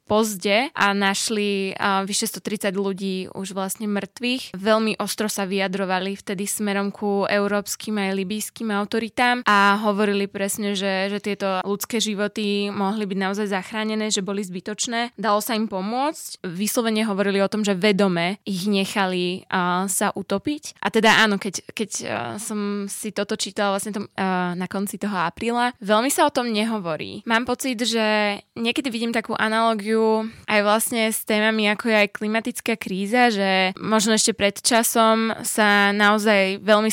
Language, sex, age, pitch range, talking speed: Slovak, female, 20-39, 195-220 Hz, 160 wpm